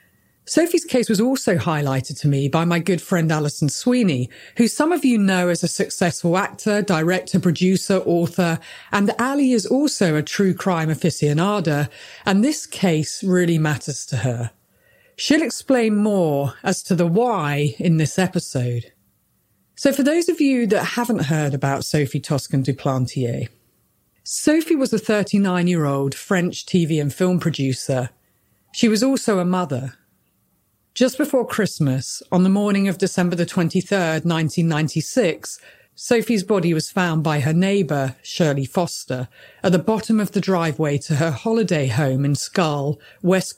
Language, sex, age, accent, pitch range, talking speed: English, female, 40-59, British, 145-205 Hz, 150 wpm